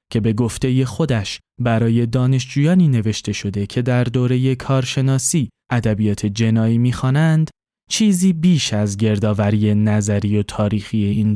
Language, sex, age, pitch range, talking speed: Persian, male, 20-39, 105-135 Hz, 120 wpm